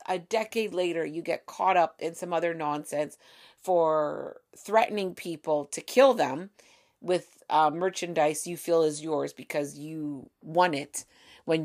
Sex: female